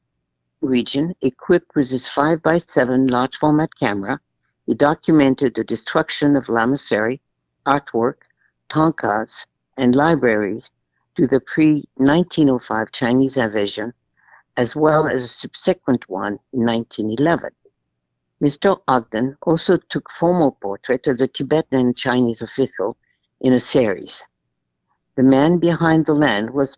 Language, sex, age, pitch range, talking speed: English, female, 60-79, 115-150 Hz, 115 wpm